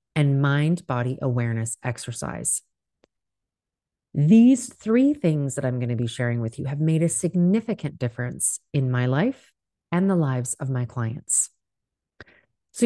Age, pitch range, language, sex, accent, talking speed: 30-49, 135-195 Hz, English, female, American, 140 wpm